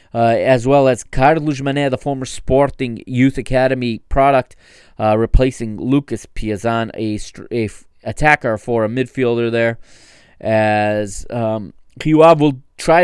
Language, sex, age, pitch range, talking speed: English, male, 20-39, 115-140 Hz, 140 wpm